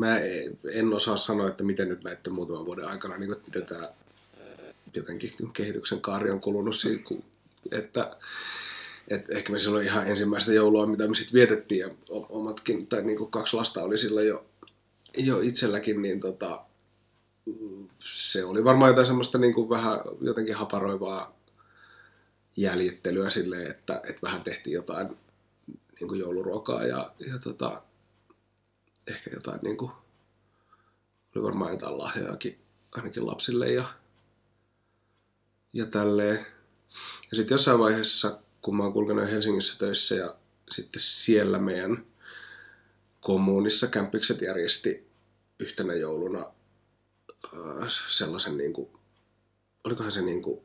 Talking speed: 115 wpm